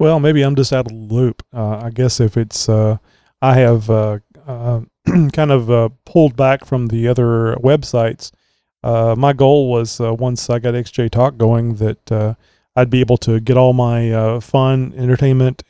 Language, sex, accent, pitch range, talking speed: English, male, American, 115-130 Hz, 190 wpm